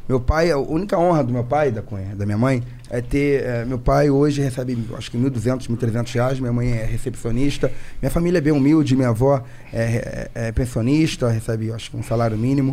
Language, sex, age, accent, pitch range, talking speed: Portuguese, male, 20-39, Brazilian, 130-170 Hz, 200 wpm